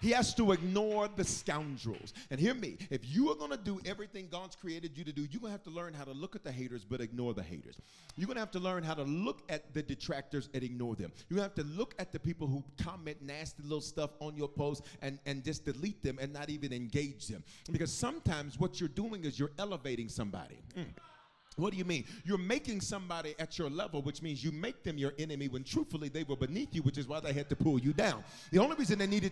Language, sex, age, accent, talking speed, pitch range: English, male, 40-59, American, 260 wpm, 145-210 Hz